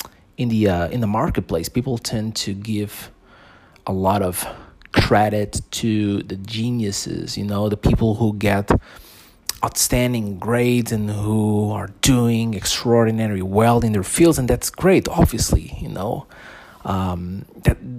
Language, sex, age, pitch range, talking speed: English, male, 30-49, 100-120 Hz, 140 wpm